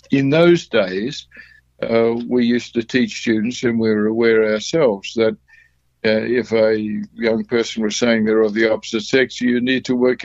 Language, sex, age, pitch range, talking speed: English, male, 60-79, 110-130 Hz, 180 wpm